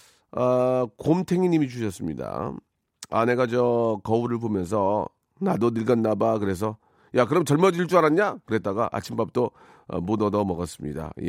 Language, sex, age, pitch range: Korean, male, 40-59, 115-150 Hz